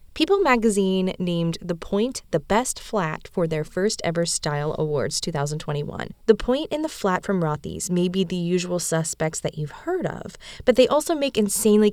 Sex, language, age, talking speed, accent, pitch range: female, English, 20-39, 180 wpm, American, 170-235 Hz